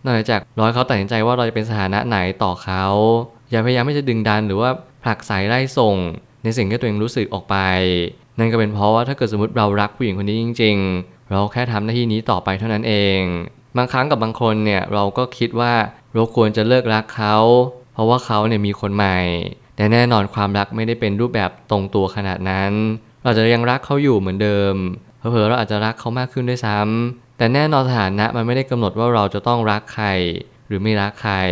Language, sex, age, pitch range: Thai, male, 20-39, 100-120 Hz